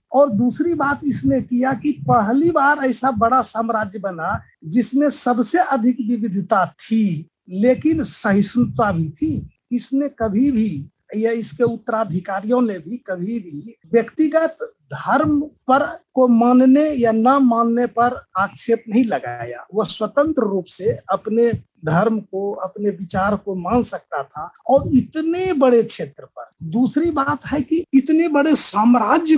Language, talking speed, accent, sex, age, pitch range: Hindi, 140 wpm, native, male, 50-69, 215-275 Hz